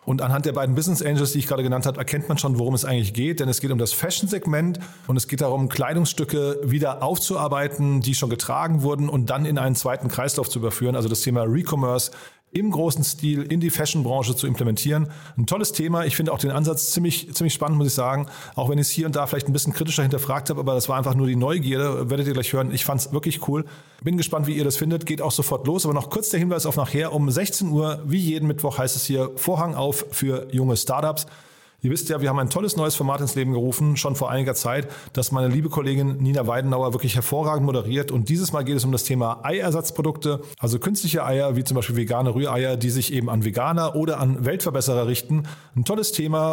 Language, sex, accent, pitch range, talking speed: German, male, German, 130-155 Hz, 235 wpm